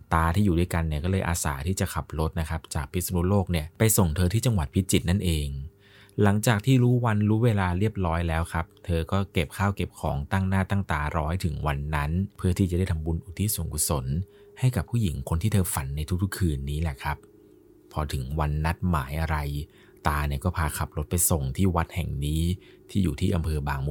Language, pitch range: Thai, 75-95 Hz